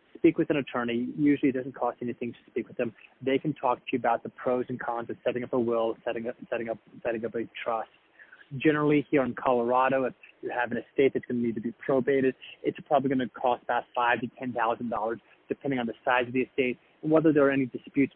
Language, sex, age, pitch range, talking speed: English, male, 20-39, 120-135 Hz, 250 wpm